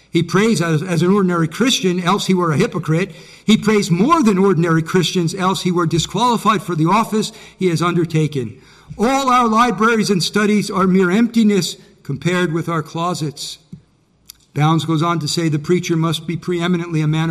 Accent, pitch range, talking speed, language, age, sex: American, 155-185 Hz, 180 wpm, English, 50-69, male